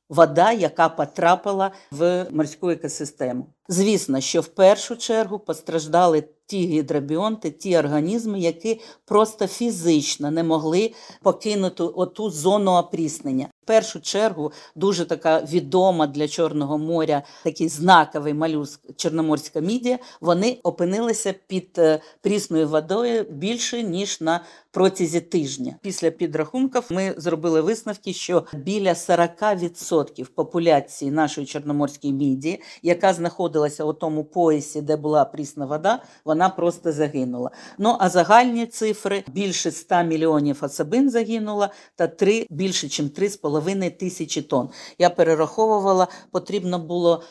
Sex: female